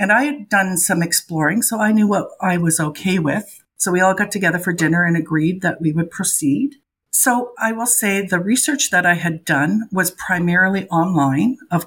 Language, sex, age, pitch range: English, female, 50-69, 160-200 Hz